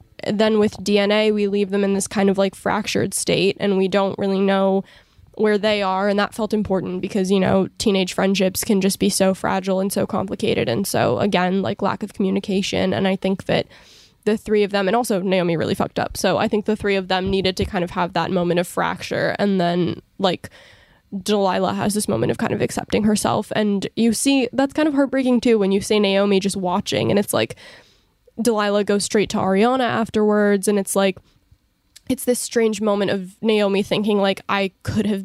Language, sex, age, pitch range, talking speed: English, female, 10-29, 195-215 Hz, 210 wpm